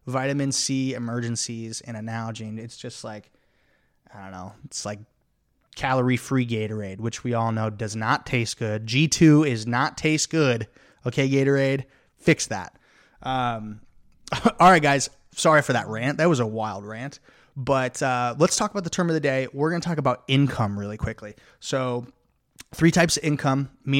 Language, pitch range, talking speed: English, 115-140 Hz, 175 wpm